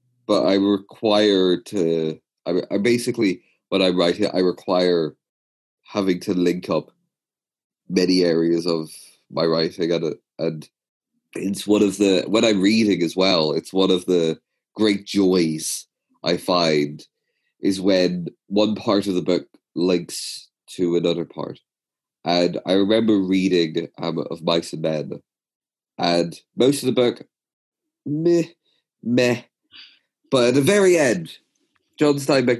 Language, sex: English, male